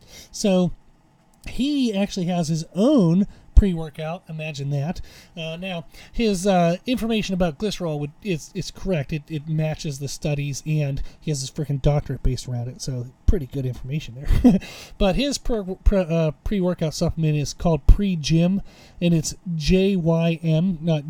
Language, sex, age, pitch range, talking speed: English, male, 30-49, 150-180 Hz, 150 wpm